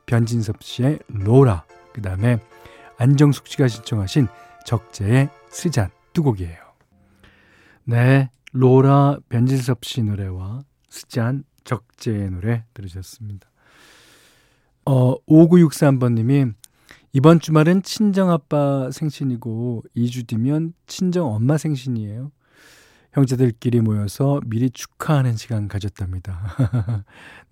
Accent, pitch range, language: native, 110-145 Hz, Korean